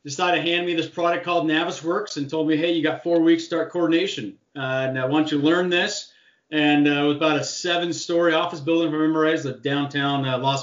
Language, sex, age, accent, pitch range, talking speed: English, male, 30-49, American, 140-165 Hz, 225 wpm